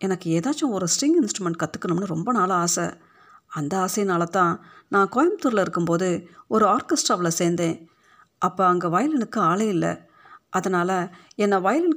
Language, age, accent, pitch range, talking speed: Tamil, 50-69, native, 170-235 Hz, 125 wpm